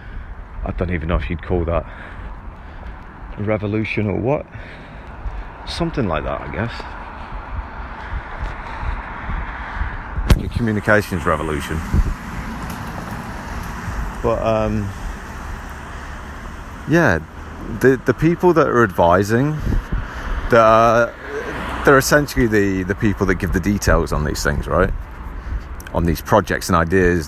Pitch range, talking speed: 80-105 Hz, 105 wpm